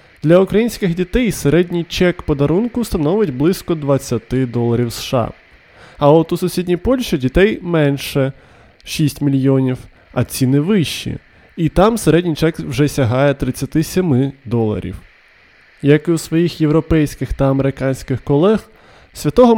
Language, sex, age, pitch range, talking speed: Ukrainian, male, 20-39, 130-180 Hz, 125 wpm